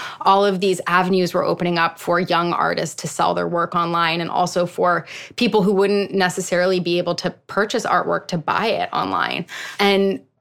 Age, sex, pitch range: 20-39, female, 175-195 Hz